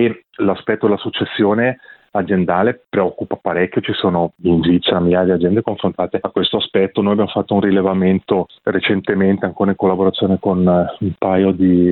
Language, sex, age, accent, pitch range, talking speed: Italian, male, 30-49, native, 90-105 Hz, 145 wpm